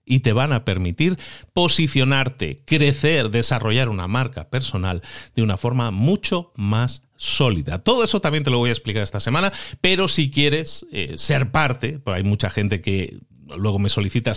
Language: Spanish